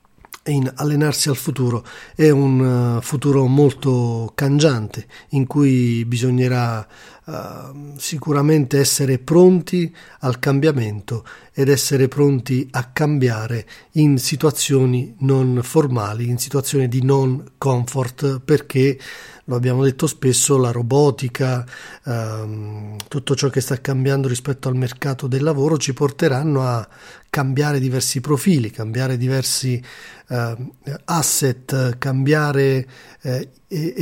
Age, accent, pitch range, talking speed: 40-59, native, 125-150 Hz, 105 wpm